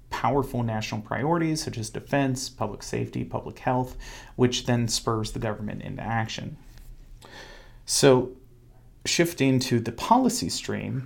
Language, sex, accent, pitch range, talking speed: English, male, American, 115-130 Hz, 125 wpm